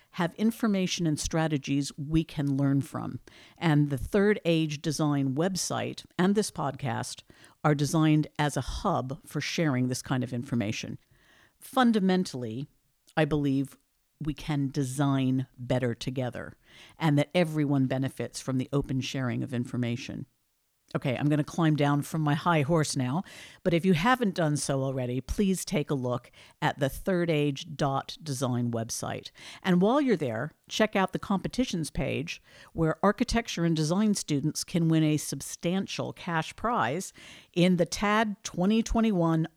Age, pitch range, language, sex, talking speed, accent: 50-69, 140-175 Hz, English, female, 145 wpm, American